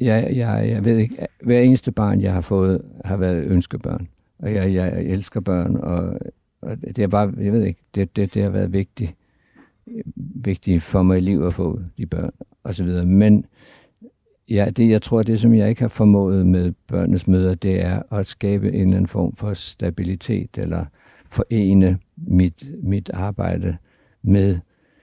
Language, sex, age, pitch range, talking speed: Danish, male, 60-79, 90-110 Hz, 175 wpm